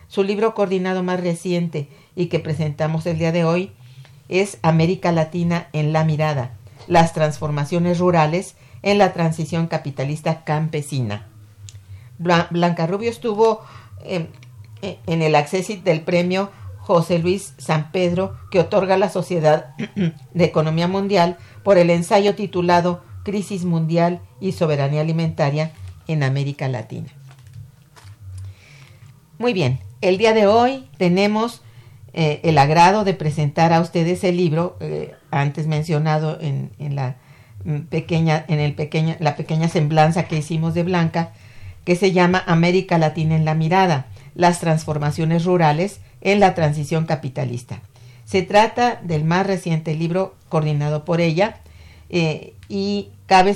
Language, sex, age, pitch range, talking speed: Spanish, female, 50-69, 145-180 Hz, 130 wpm